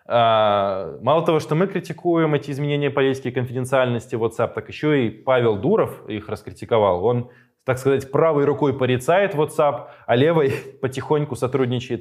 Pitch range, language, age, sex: 115-150 Hz, Russian, 20-39, male